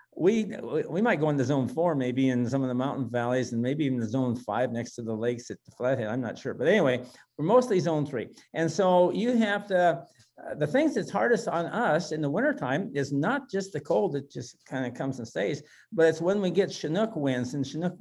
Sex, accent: male, American